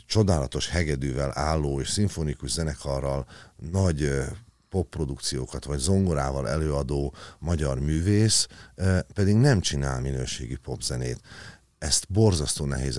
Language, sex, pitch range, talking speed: Hungarian, male, 70-100 Hz, 95 wpm